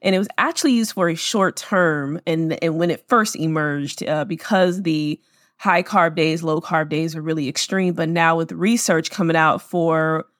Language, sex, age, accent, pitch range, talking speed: English, female, 20-39, American, 160-195 Hz, 185 wpm